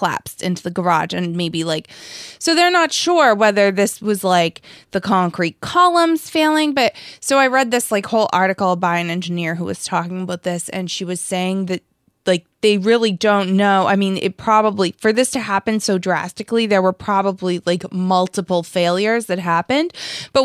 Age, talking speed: 20-39, 190 wpm